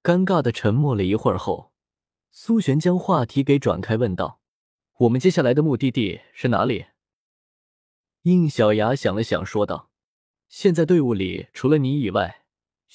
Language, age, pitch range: Chinese, 20-39, 110-155 Hz